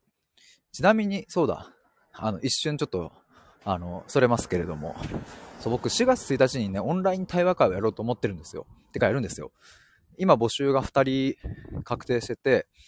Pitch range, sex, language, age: 95-150 Hz, male, Japanese, 20-39